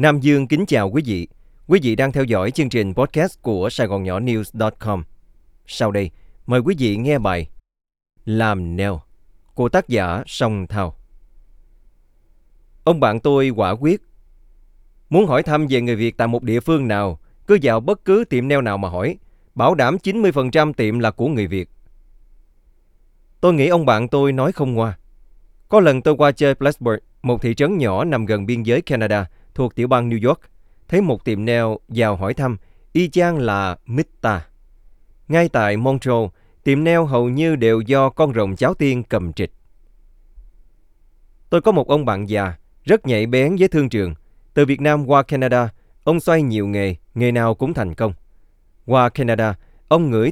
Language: Vietnamese